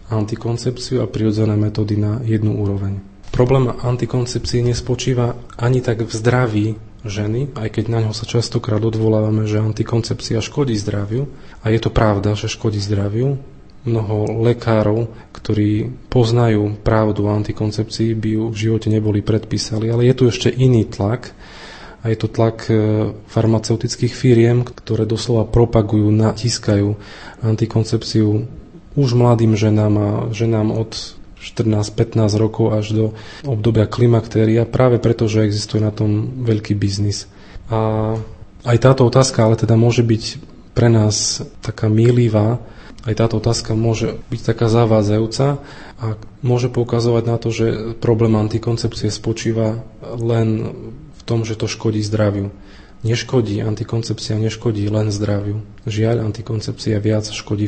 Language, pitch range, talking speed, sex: Slovak, 105-115 Hz, 130 wpm, male